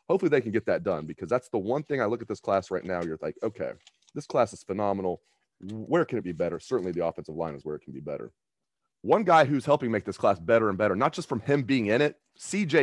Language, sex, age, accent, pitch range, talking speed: English, male, 30-49, American, 90-130 Hz, 270 wpm